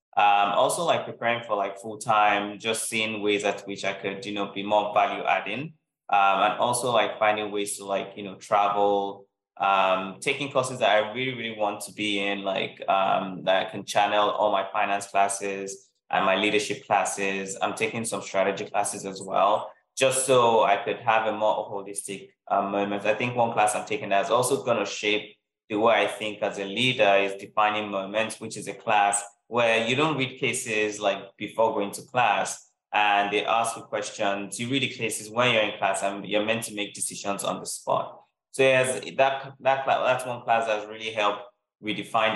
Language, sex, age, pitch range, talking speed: English, male, 20-39, 100-110 Hz, 205 wpm